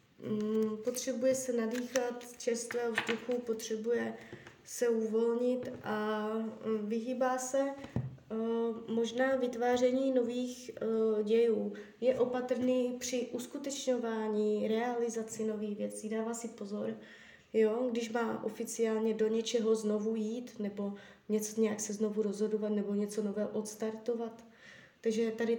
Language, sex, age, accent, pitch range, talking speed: Czech, female, 20-39, native, 215-240 Hz, 105 wpm